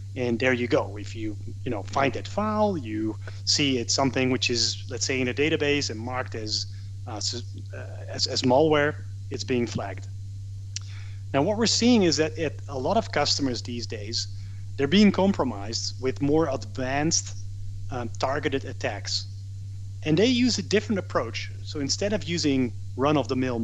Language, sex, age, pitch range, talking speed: English, male, 30-49, 100-135 Hz, 165 wpm